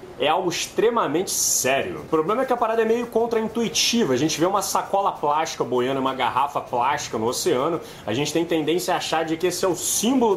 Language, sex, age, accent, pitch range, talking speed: Portuguese, male, 20-39, Brazilian, 135-195 Hz, 210 wpm